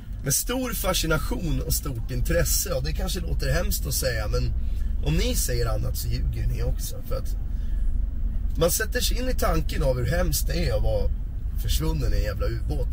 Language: Swedish